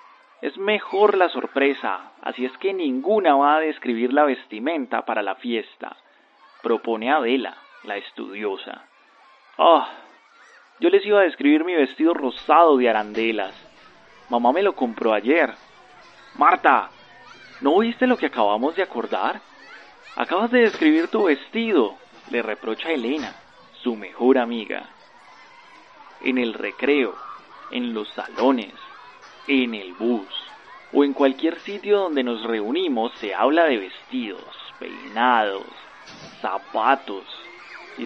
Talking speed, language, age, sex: 125 wpm, Spanish, 30-49, male